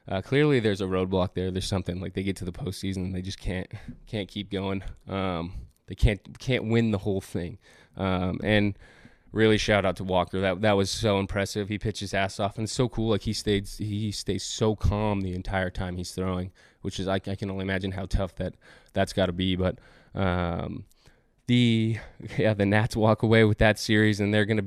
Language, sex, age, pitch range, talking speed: English, male, 20-39, 95-105 Hz, 220 wpm